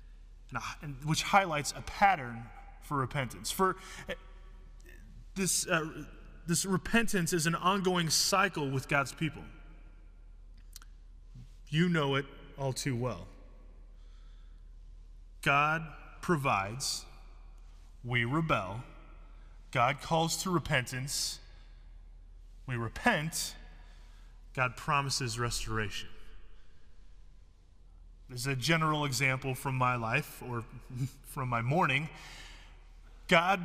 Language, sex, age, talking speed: English, male, 20-39, 90 wpm